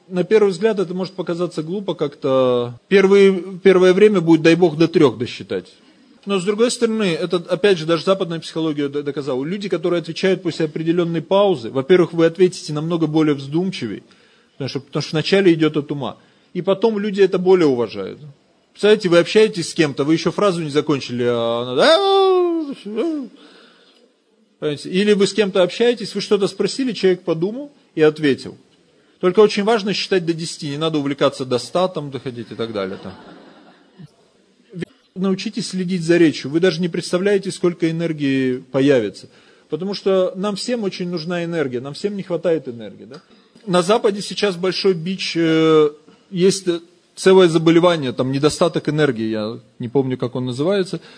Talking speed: 155 wpm